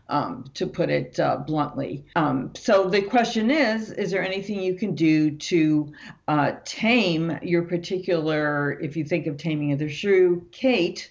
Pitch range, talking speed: 155-195 Hz, 170 wpm